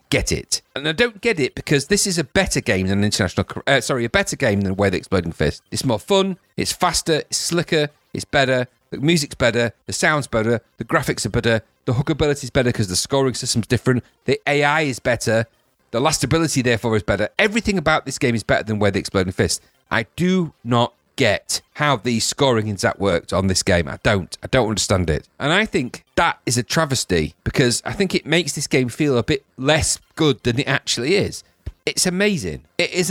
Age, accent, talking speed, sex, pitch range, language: 40-59, British, 215 wpm, male, 100-145 Hz, English